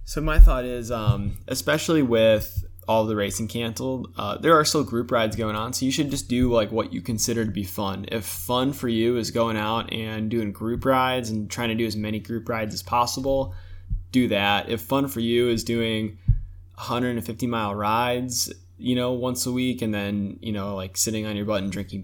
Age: 20-39